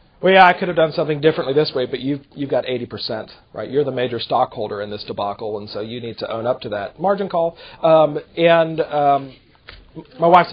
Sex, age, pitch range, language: male, 40-59, 145-215 Hz, English